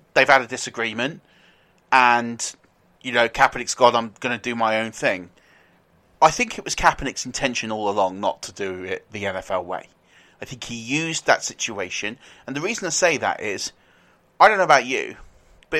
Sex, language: male, English